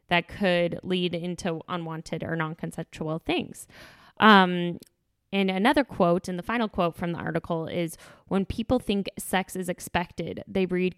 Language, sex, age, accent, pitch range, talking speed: English, female, 10-29, American, 165-190 Hz, 155 wpm